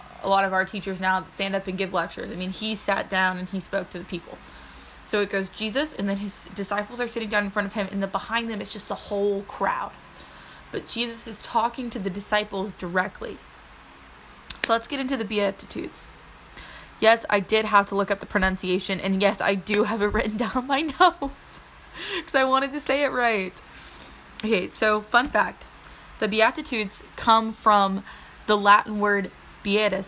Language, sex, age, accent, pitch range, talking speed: English, female, 20-39, American, 190-220 Hz, 195 wpm